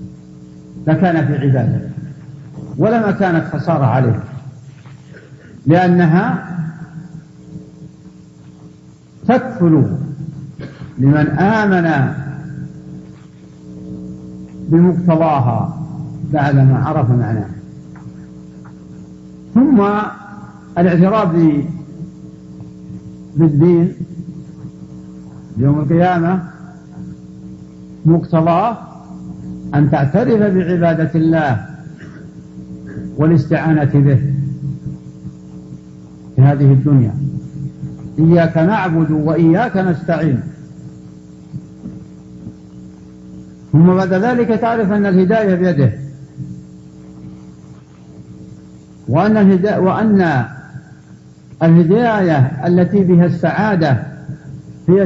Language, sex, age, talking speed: Arabic, male, 60-79, 50 wpm